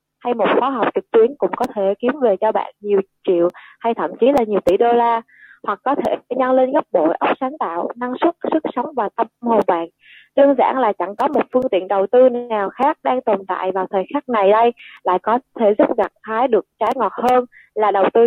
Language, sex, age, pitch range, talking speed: Vietnamese, female, 20-39, 205-265 Hz, 245 wpm